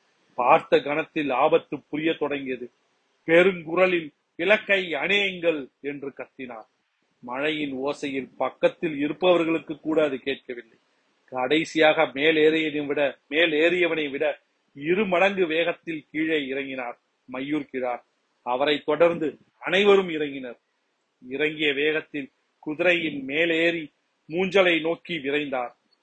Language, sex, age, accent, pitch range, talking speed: Tamil, male, 40-59, native, 145-170 Hz, 85 wpm